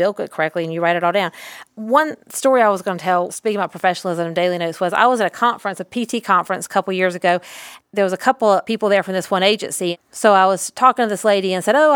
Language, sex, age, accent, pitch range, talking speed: English, female, 40-59, American, 185-245 Hz, 285 wpm